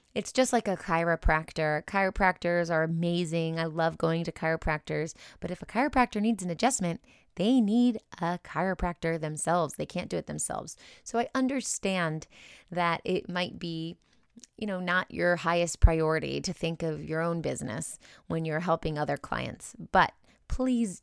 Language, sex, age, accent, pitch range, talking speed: English, female, 20-39, American, 160-195 Hz, 160 wpm